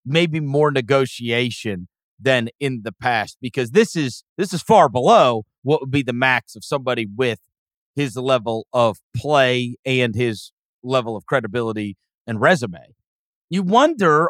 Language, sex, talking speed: English, male, 145 wpm